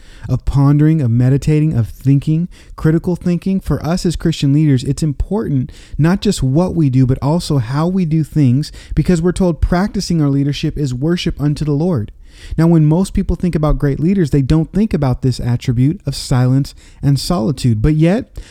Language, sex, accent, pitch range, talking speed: English, male, American, 125-160 Hz, 185 wpm